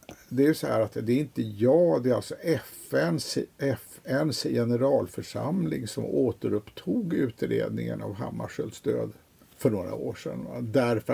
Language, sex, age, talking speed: Swedish, male, 50-69, 140 wpm